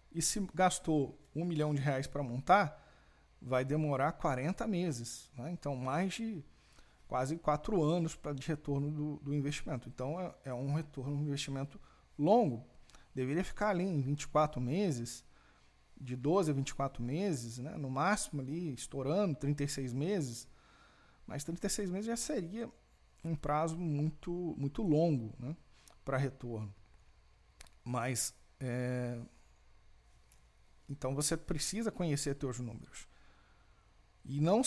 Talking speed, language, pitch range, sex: 130 wpm, Portuguese, 135-170 Hz, male